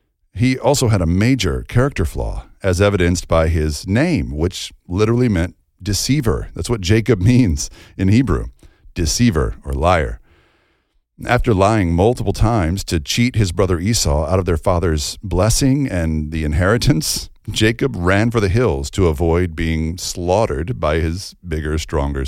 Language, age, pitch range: English, 50-69, 80-110 Hz